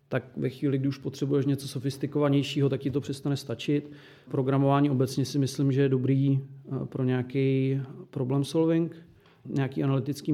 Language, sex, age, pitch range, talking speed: Czech, male, 40-59, 130-145 Hz, 150 wpm